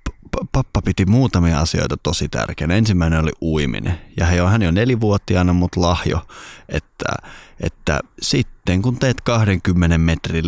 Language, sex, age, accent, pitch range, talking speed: Finnish, male, 30-49, native, 80-100 Hz, 120 wpm